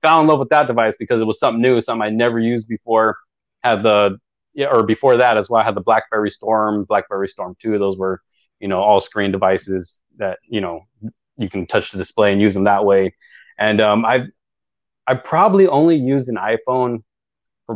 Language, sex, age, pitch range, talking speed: English, male, 20-39, 105-130 Hz, 210 wpm